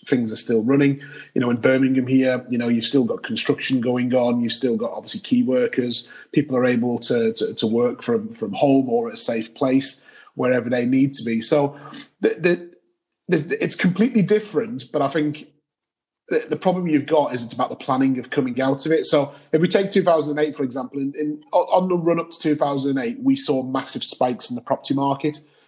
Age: 30-49